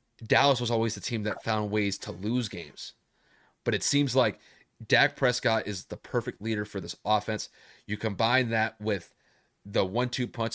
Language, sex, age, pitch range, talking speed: English, male, 30-49, 105-125 Hz, 175 wpm